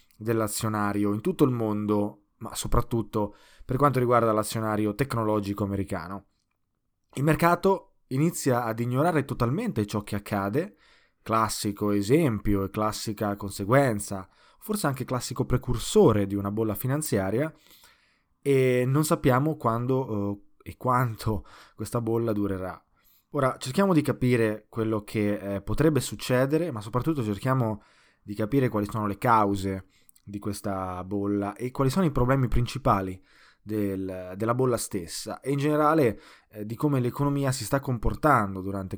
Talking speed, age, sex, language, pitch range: 130 wpm, 20-39, male, Italian, 100-130 Hz